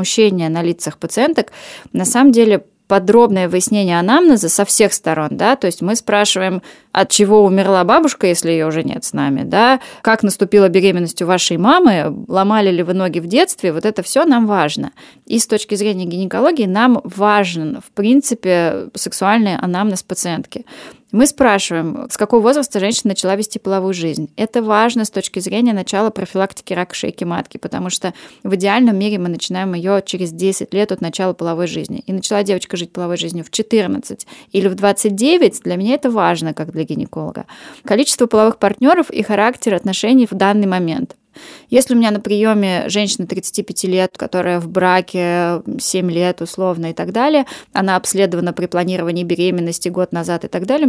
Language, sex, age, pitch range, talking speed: Russian, female, 20-39, 175-220 Hz, 170 wpm